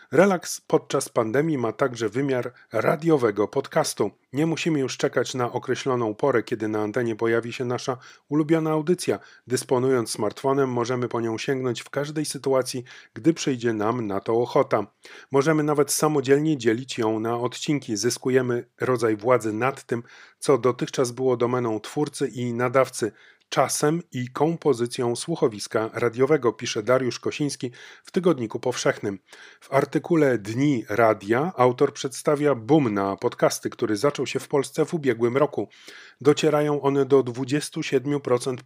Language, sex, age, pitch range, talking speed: Polish, male, 30-49, 120-145 Hz, 140 wpm